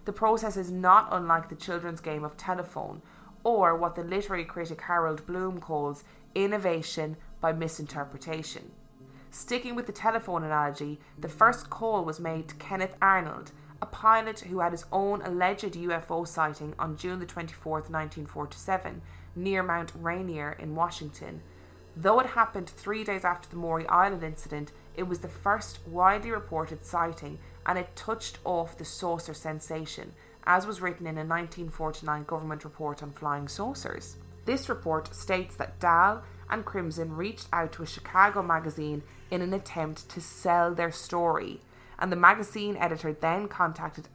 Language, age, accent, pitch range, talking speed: English, 20-39, Irish, 155-185 Hz, 155 wpm